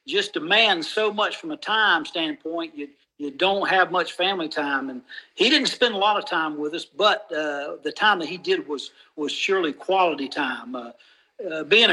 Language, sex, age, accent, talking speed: English, male, 60-79, American, 205 wpm